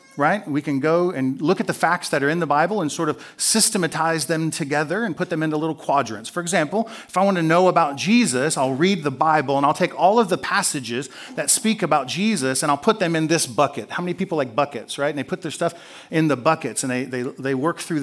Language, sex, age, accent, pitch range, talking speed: English, male, 40-59, American, 140-185 Hz, 255 wpm